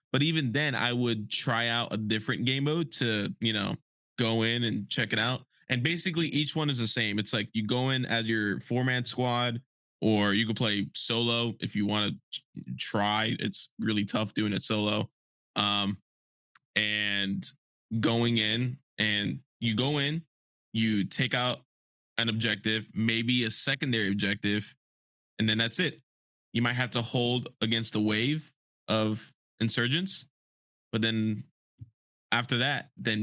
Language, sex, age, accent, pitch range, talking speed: English, male, 20-39, American, 105-120 Hz, 160 wpm